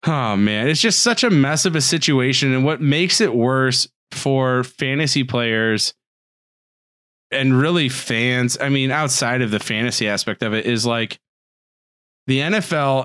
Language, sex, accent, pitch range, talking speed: English, male, American, 120-160 Hz, 155 wpm